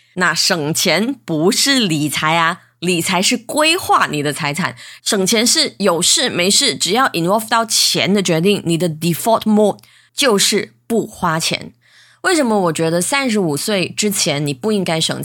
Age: 20-39